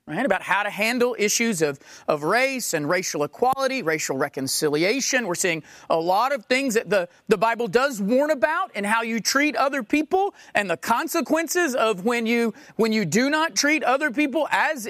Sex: male